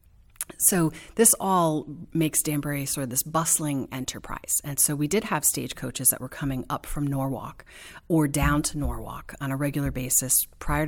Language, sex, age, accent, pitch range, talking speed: English, female, 40-59, American, 135-160 Hz, 170 wpm